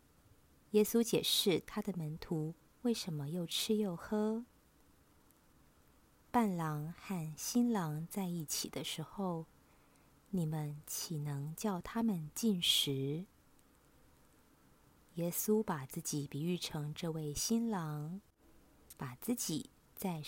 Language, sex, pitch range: Chinese, female, 160-215 Hz